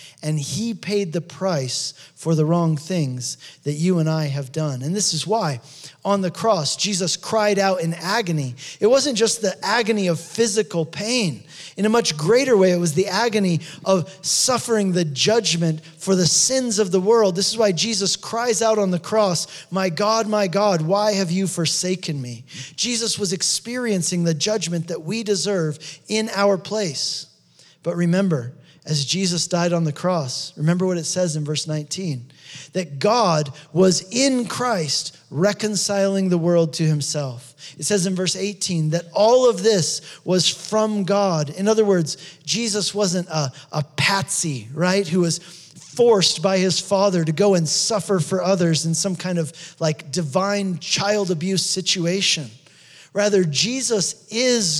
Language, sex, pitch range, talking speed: English, male, 155-205 Hz, 170 wpm